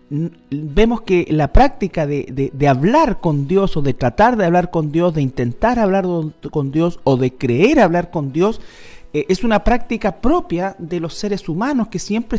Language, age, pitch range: Spanish, 40-59, 140-195 Hz